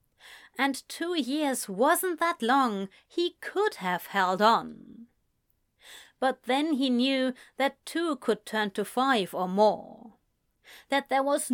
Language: English